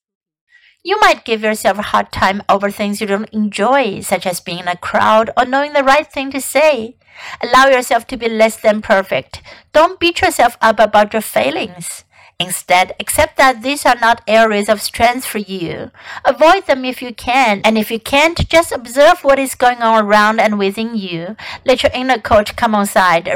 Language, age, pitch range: Chinese, 60-79, 200-265 Hz